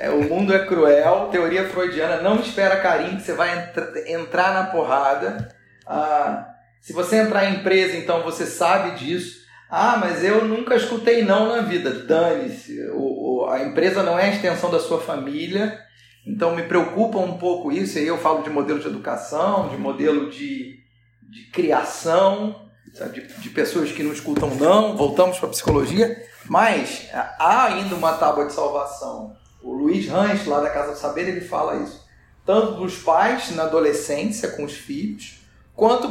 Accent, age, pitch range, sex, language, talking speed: Brazilian, 40-59, 165-225 Hz, male, Portuguese, 170 wpm